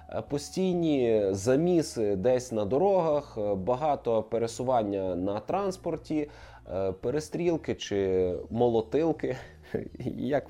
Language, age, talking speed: Ukrainian, 20-39, 75 wpm